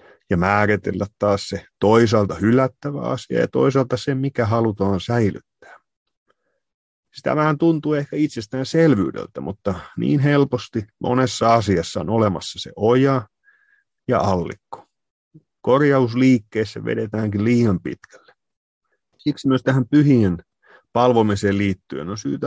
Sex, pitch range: male, 105-135 Hz